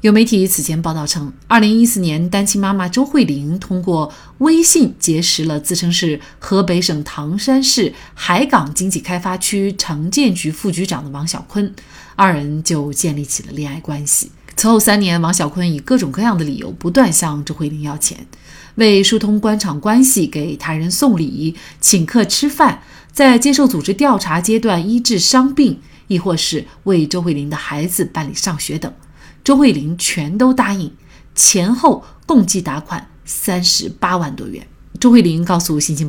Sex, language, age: female, Chinese, 30-49